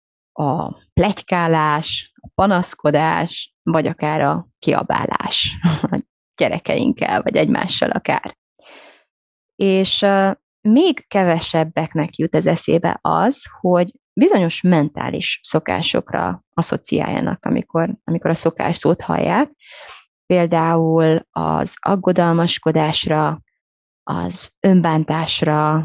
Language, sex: Hungarian, female